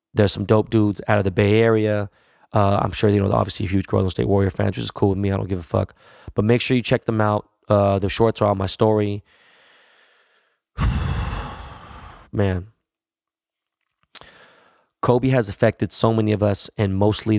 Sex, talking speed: male, 190 wpm